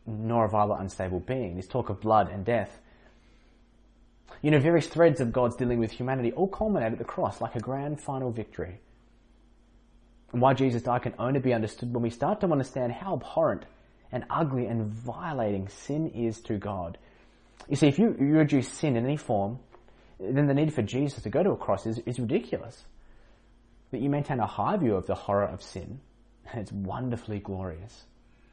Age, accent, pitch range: 20-39, Australian, 115-140 Hz